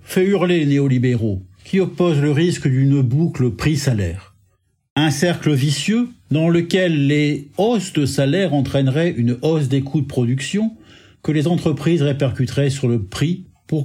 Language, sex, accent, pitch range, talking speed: French, male, French, 125-170 Hz, 150 wpm